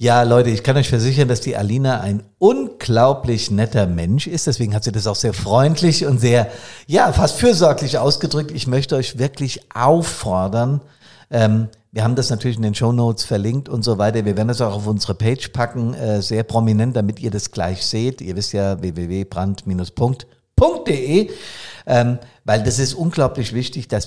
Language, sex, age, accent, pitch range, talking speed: German, male, 50-69, German, 105-130 Hz, 175 wpm